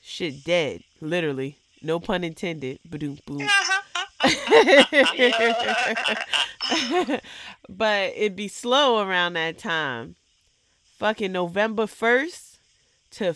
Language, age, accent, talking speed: English, 20-39, American, 75 wpm